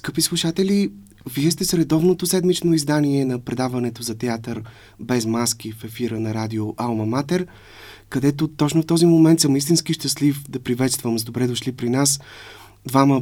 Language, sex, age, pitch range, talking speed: Bulgarian, male, 30-49, 115-140 Hz, 160 wpm